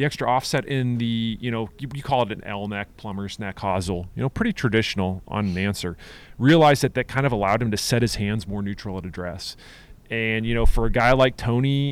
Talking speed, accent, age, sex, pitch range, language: 230 wpm, American, 30-49, male, 100-130 Hz, English